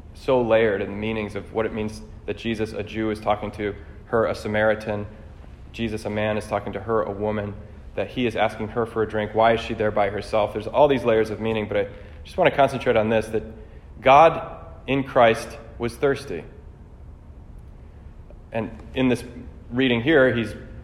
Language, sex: English, male